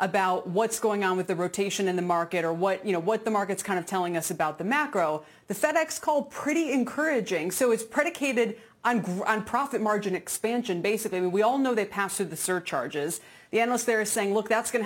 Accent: American